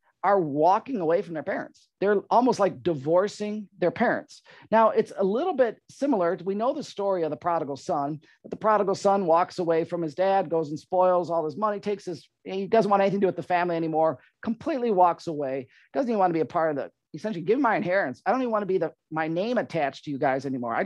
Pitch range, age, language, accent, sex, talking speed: 160-200 Hz, 40-59, English, American, male, 245 wpm